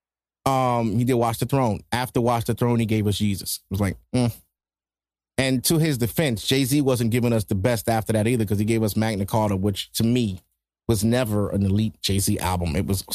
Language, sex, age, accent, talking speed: English, male, 30-49, American, 220 wpm